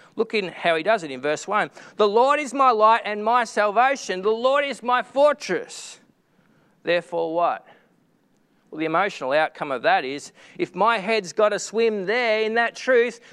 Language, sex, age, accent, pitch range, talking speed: English, male, 40-59, Australian, 190-255 Hz, 185 wpm